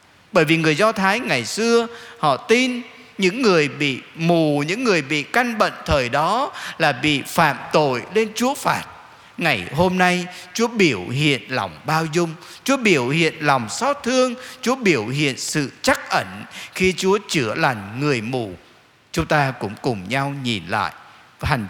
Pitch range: 130-170 Hz